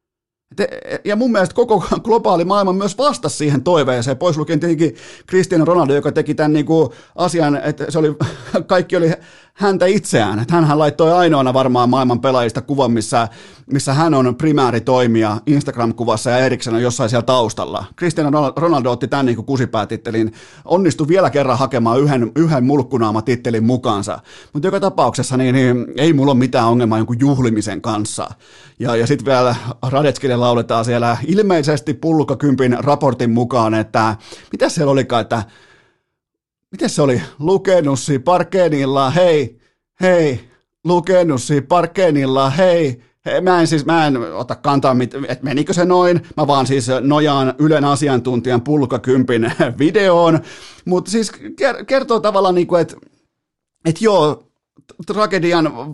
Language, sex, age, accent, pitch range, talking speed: Finnish, male, 30-49, native, 125-170 Hz, 135 wpm